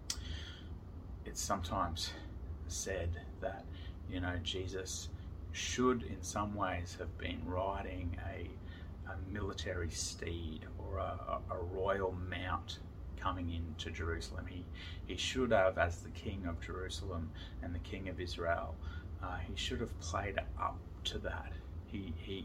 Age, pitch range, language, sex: 30-49, 85-95 Hz, English, male